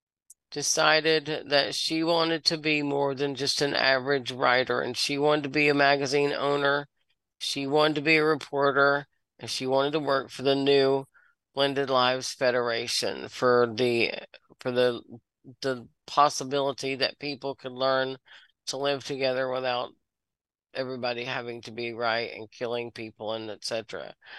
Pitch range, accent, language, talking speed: 130-150 Hz, American, English, 150 wpm